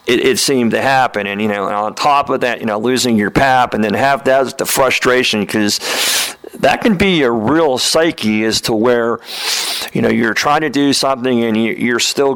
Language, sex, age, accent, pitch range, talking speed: English, male, 50-69, American, 110-135 Hz, 215 wpm